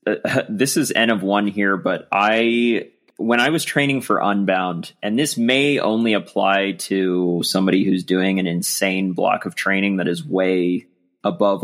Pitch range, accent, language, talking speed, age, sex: 95-115 Hz, American, English, 170 wpm, 20-39, male